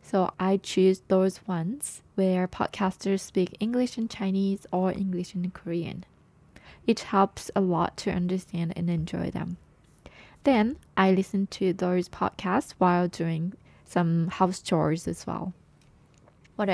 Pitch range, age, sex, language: 180-210 Hz, 20-39, female, Japanese